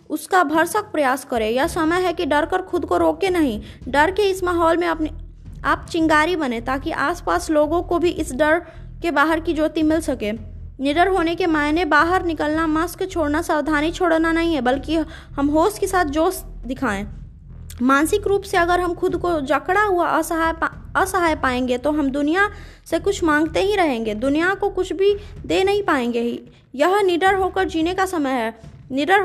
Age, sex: 20-39, female